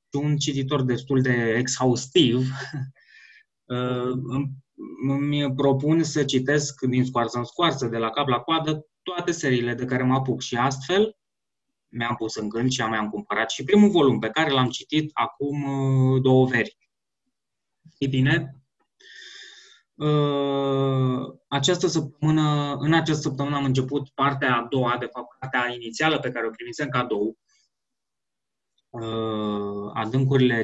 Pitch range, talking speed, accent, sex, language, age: 125-160 Hz, 140 wpm, native, male, Romanian, 20-39